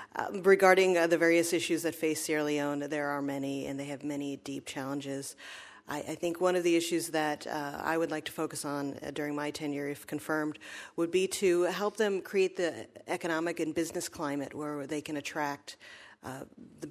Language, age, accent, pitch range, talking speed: English, 40-59, American, 145-160 Hz, 200 wpm